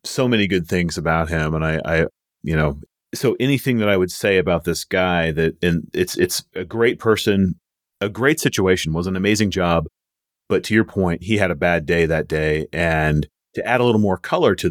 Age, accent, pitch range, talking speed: 30-49, American, 85-105 Hz, 215 wpm